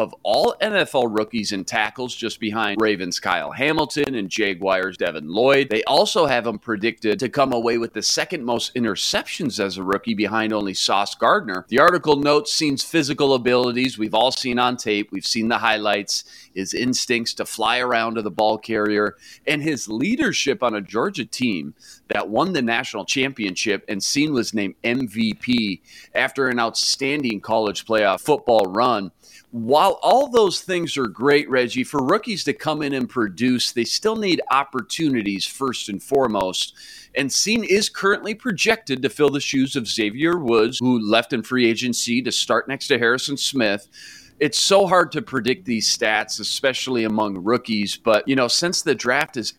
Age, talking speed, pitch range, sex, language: 40-59, 175 wpm, 110-145 Hz, male, English